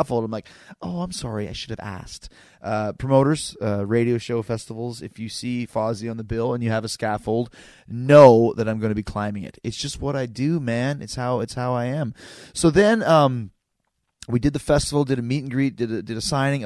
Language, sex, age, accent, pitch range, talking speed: English, male, 30-49, American, 105-125 Hz, 225 wpm